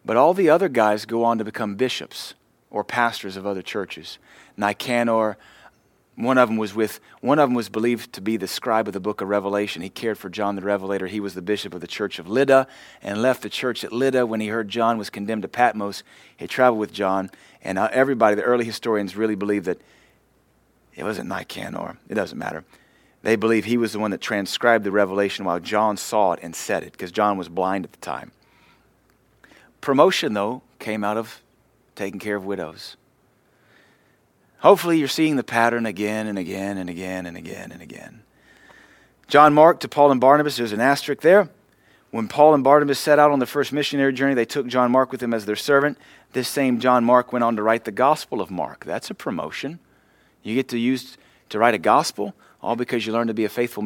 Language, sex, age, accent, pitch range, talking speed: English, male, 30-49, American, 105-135 Hz, 210 wpm